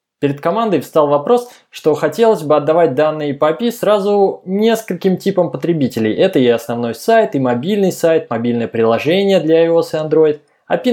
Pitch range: 145-190 Hz